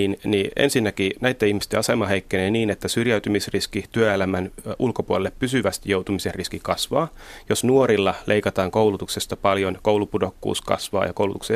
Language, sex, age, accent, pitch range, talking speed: Finnish, male, 30-49, native, 95-110 Hz, 130 wpm